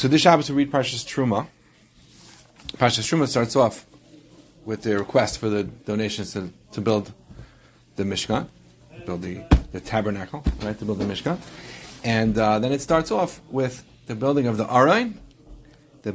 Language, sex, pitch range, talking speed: English, male, 110-140 Hz, 165 wpm